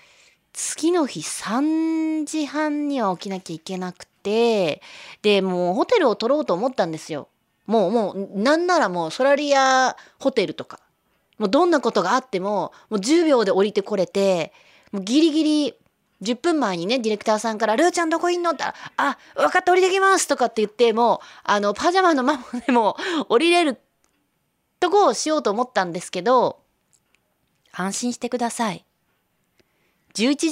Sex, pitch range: female, 200-310 Hz